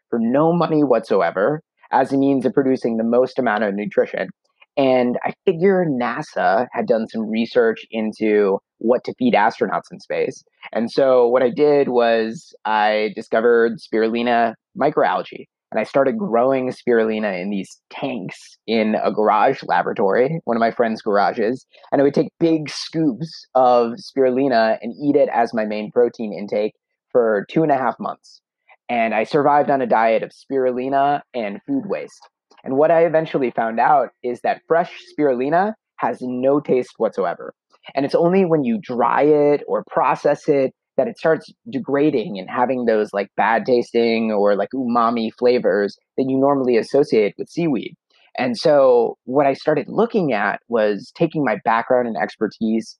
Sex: male